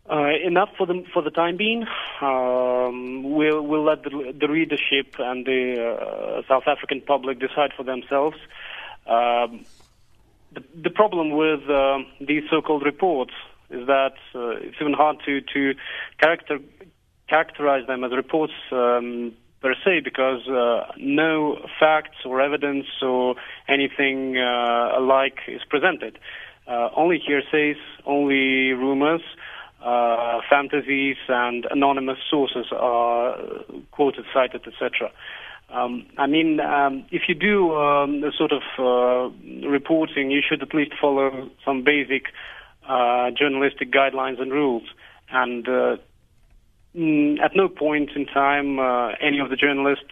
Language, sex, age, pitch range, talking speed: English, male, 30-49, 130-150 Hz, 135 wpm